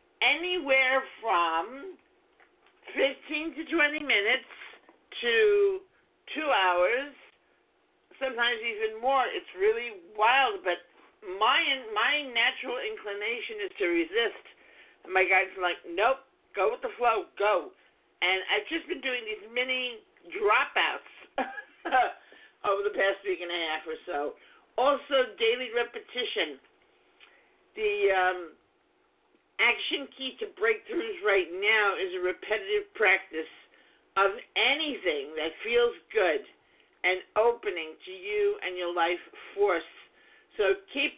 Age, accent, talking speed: 50-69, American, 115 wpm